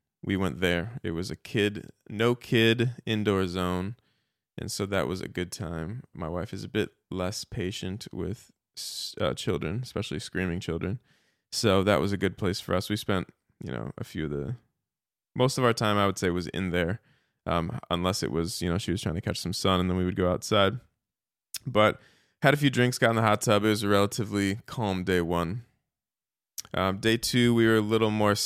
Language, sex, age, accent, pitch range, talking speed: English, male, 20-39, American, 90-110 Hz, 215 wpm